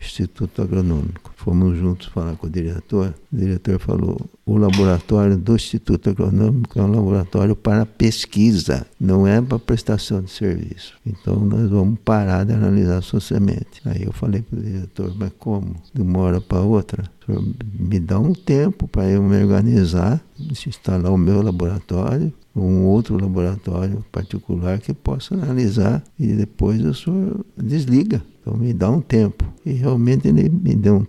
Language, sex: Portuguese, male